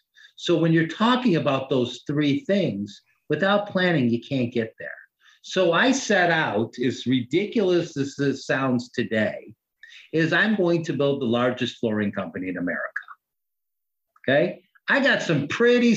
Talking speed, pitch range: 150 wpm, 135-185 Hz